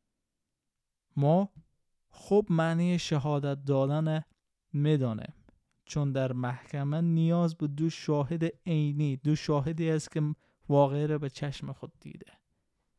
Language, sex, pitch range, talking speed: Persian, male, 135-165 Hz, 110 wpm